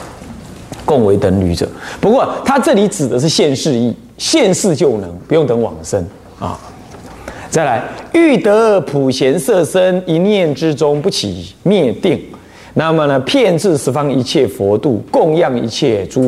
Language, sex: Chinese, male